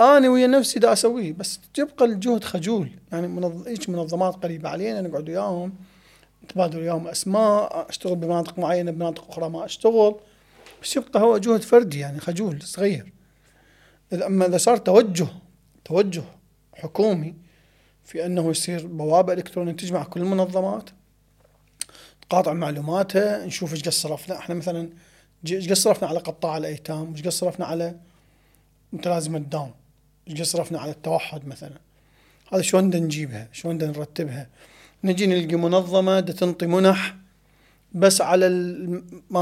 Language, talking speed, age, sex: Arabic, 130 wpm, 30-49, male